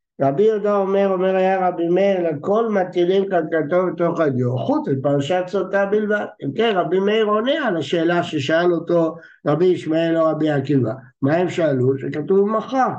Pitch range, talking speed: 150-210 Hz, 160 wpm